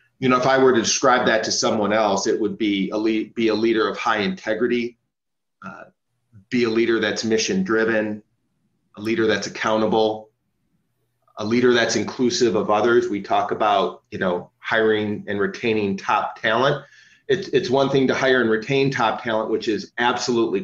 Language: English